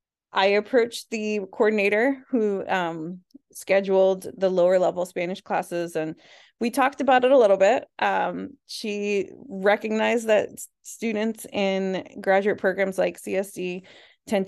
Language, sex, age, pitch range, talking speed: English, female, 20-39, 180-215 Hz, 130 wpm